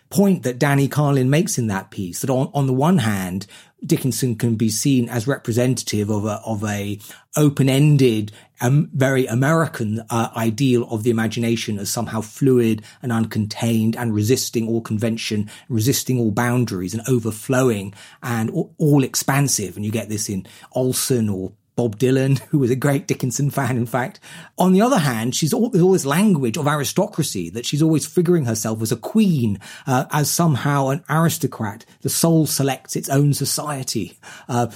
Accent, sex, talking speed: British, male, 165 wpm